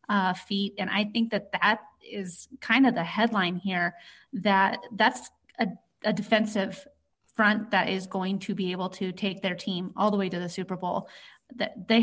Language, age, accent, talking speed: English, 30-49, American, 190 wpm